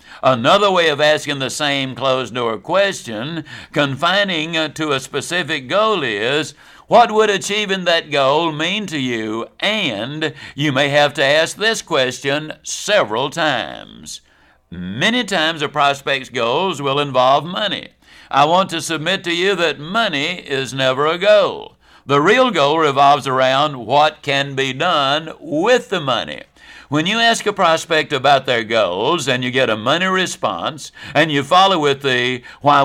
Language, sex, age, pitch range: English, male, 60-79, 135-175 Hz